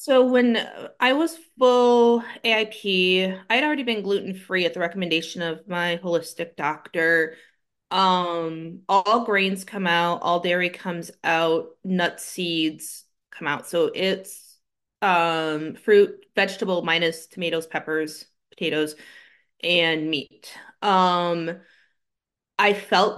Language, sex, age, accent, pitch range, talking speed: English, female, 20-39, American, 170-215 Hz, 115 wpm